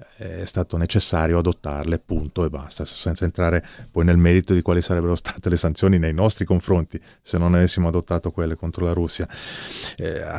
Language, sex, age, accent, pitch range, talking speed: Italian, male, 30-49, native, 85-95 Hz, 175 wpm